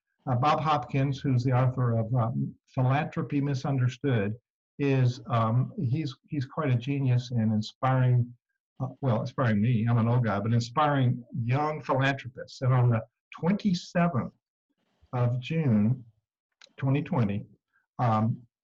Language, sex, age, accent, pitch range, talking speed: English, male, 60-79, American, 120-145 Hz, 125 wpm